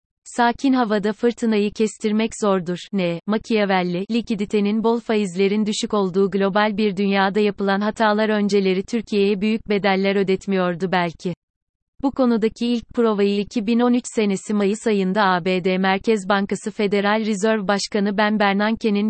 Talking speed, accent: 125 wpm, native